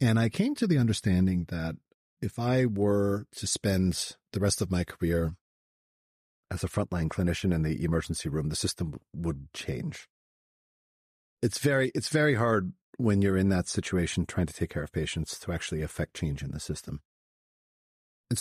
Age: 40-59